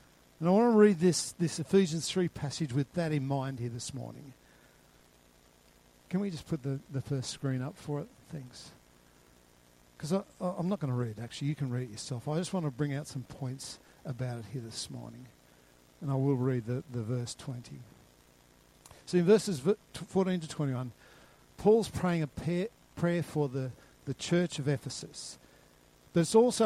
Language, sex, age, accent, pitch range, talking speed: English, male, 50-69, Australian, 130-195 Hz, 180 wpm